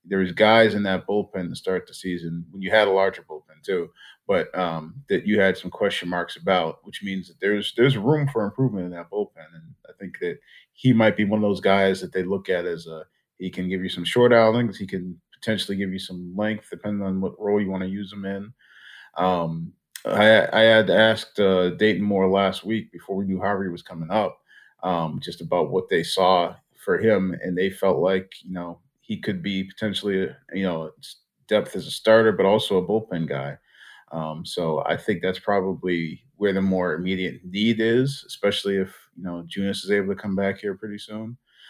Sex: male